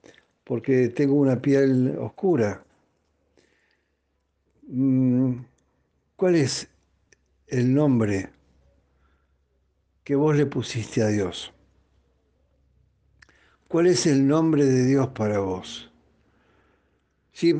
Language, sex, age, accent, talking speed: Spanish, male, 60-79, Argentinian, 80 wpm